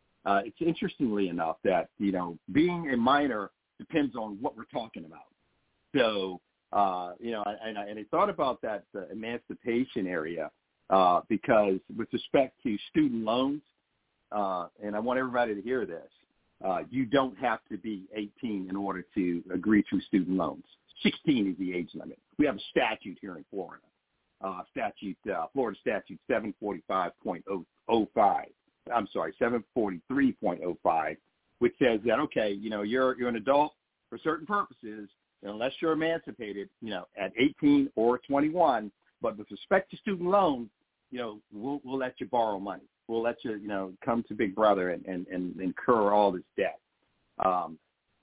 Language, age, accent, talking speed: English, 50-69, American, 165 wpm